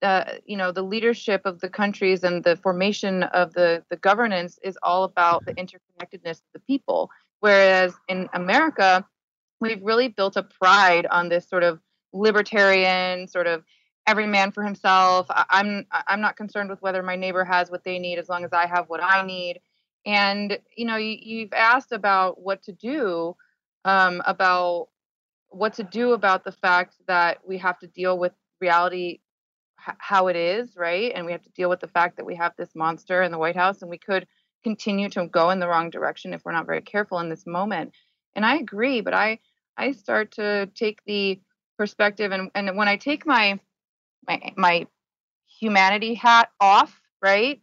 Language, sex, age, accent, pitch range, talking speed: English, female, 20-39, American, 180-215 Hz, 190 wpm